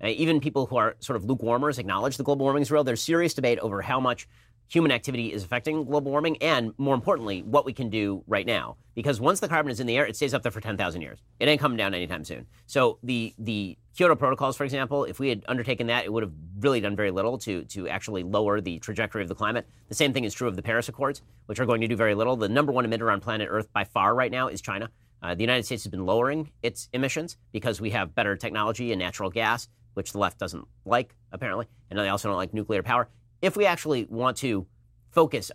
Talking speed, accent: 250 wpm, American